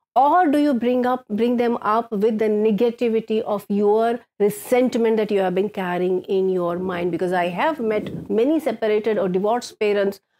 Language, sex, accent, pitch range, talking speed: English, female, Indian, 190-250 Hz, 180 wpm